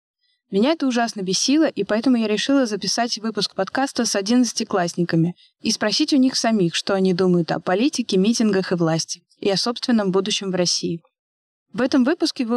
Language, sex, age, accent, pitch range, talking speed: Russian, female, 20-39, native, 190-240 Hz, 170 wpm